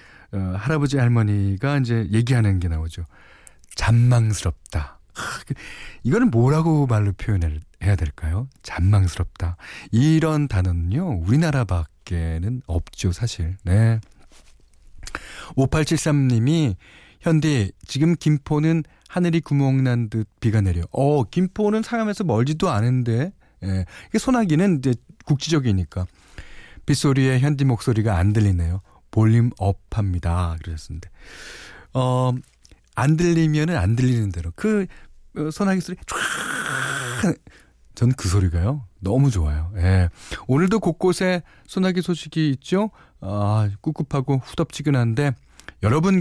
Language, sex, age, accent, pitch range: Korean, male, 40-59, native, 95-155 Hz